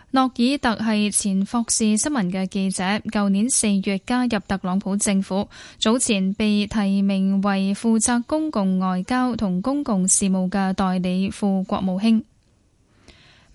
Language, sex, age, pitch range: Chinese, female, 10-29, 195-235 Hz